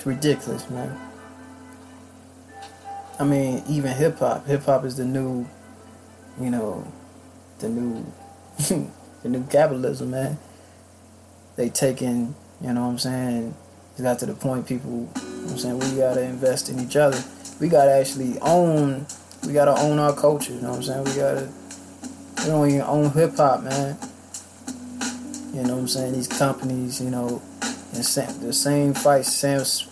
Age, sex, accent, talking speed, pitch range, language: 20-39, male, American, 165 wpm, 125-145 Hz, English